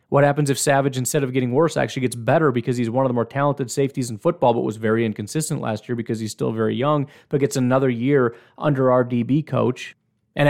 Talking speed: 235 wpm